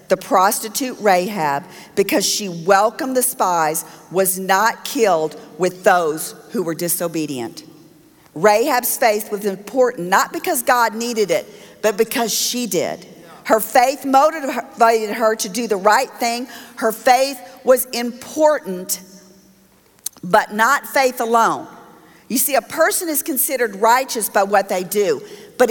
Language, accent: English, American